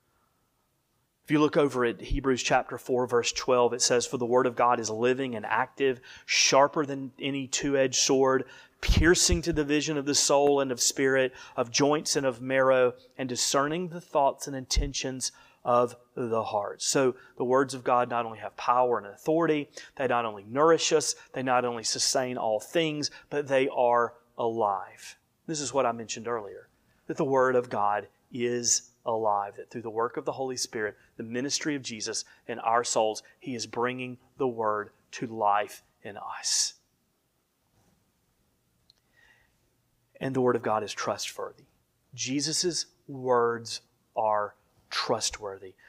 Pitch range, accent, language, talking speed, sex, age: 115-135 Hz, American, English, 165 wpm, male, 30-49